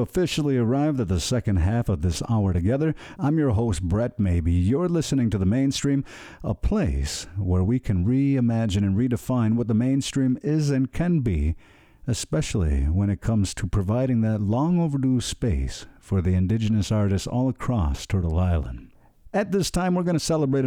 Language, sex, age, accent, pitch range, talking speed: English, male, 50-69, American, 100-135 Hz, 175 wpm